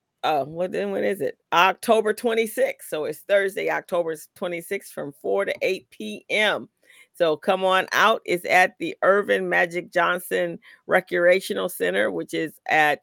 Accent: American